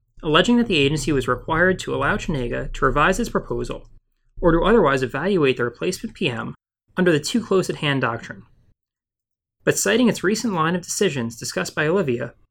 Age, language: 20-39, English